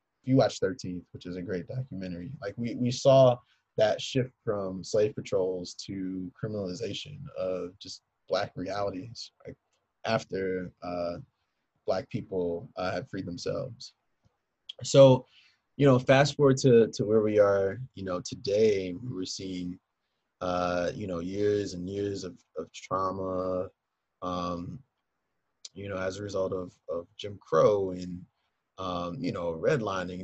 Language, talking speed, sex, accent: English, 145 wpm, male, American